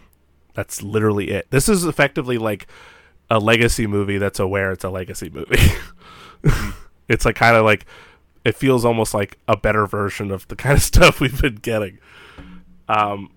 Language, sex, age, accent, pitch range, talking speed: English, male, 20-39, American, 95-115 Hz, 165 wpm